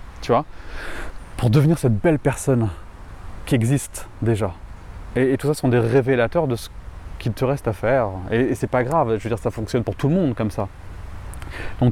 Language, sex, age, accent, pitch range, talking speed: French, male, 20-39, French, 110-150 Hz, 205 wpm